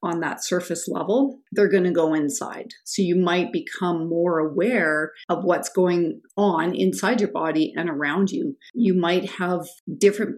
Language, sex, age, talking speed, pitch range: English, female, 40-59, 160 wpm, 170-200 Hz